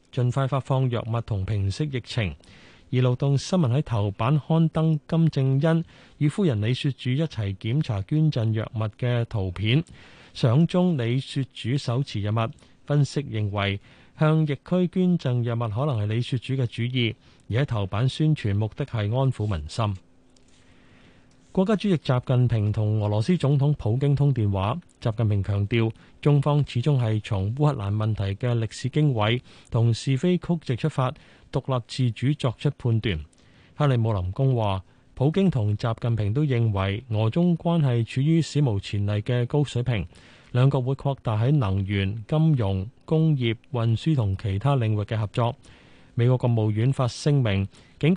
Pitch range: 110-145 Hz